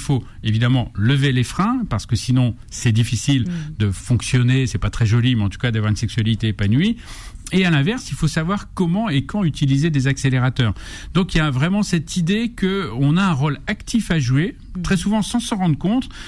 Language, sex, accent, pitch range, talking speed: French, male, French, 115-160 Hz, 210 wpm